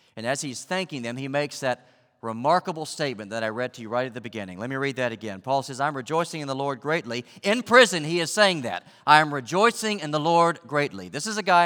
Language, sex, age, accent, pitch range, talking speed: English, male, 40-59, American, 105-140 Hz, 250 wpm